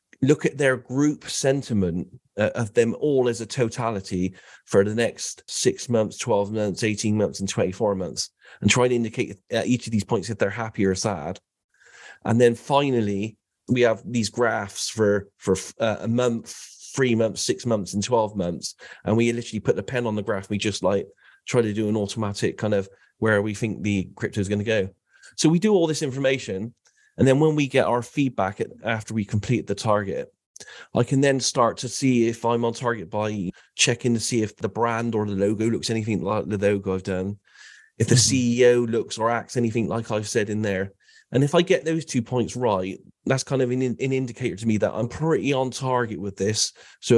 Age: 30-49